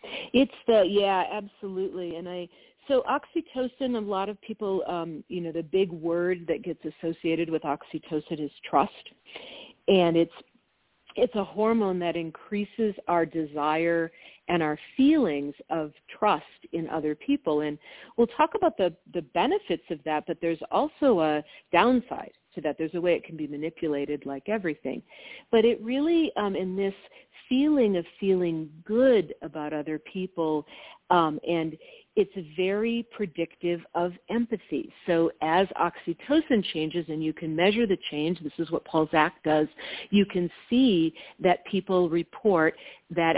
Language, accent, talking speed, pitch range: English, American, 150 wpm, 160-215 Hz